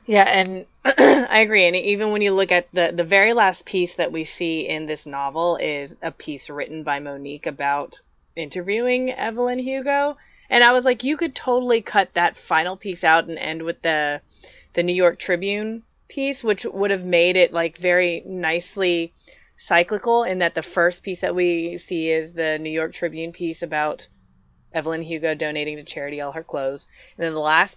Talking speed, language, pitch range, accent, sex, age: 190 wpm, English, 155-190 Hz, American, female, 20-39